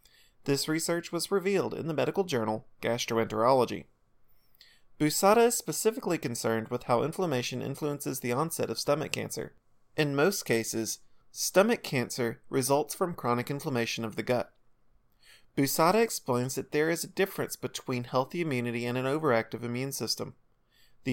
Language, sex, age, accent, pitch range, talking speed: English, male, 30-49, American, 120-170 Hz, 140 wpm